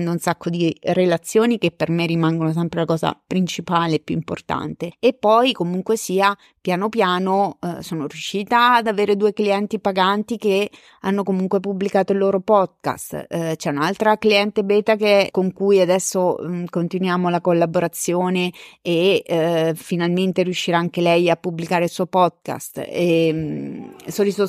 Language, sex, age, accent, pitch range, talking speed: Italian, female, 30-49, native, 170-210 Hz, 145 wpm